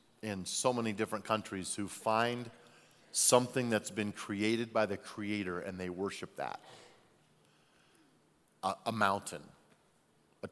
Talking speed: 125 wpm